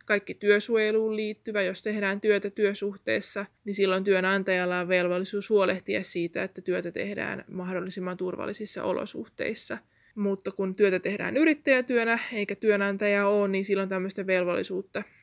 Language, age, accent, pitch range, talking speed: Finnish, 20-39, native, 185-205 Hz, 125 wpm